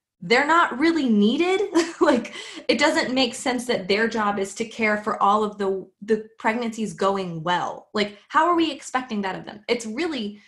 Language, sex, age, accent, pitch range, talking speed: English, female, 20-39, American, 190-245 Hz, 190 wpm